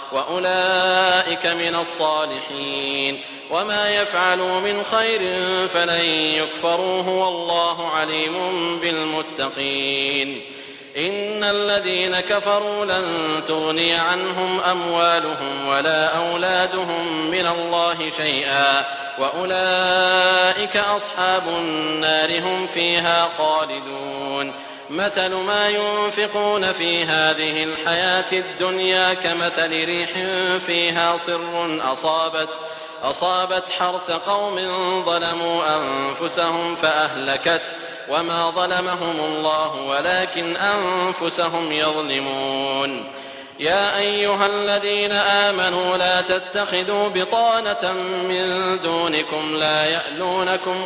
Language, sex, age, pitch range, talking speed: English, male, 40-59, 155-185 Hz, 80 wpm